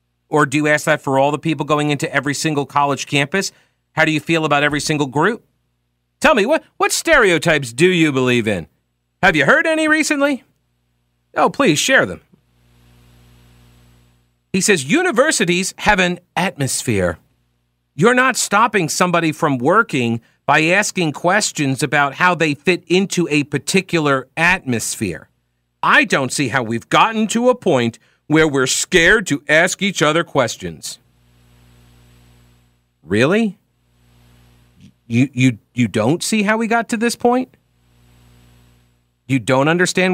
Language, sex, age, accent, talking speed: English, male, 50-69, American, 145 wpm